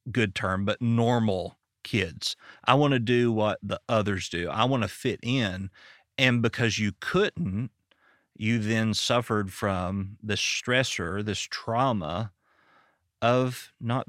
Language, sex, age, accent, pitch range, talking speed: English, male, 40-59, American, 100-120 Hz, 135 wpm